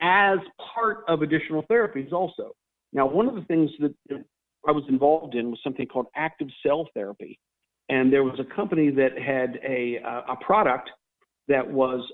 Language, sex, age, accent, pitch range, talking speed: English, male, 50-69, American, 130-160 Hz, 175 wpm